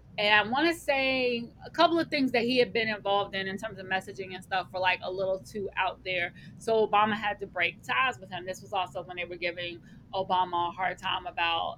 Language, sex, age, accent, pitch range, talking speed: English, female, 20-39, American, 195-270 Hz, 245 wpm